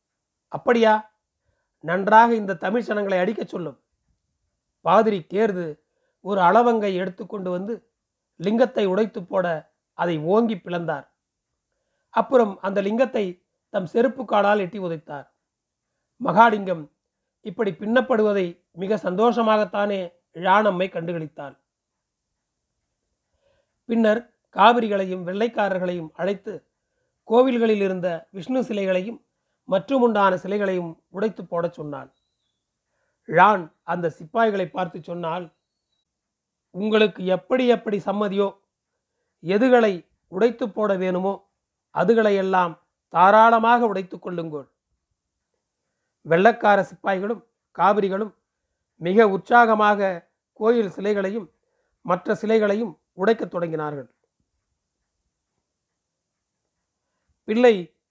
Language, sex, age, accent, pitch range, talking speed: Tamil, male, 40-59, native, 175-225 Hz, 80 wpm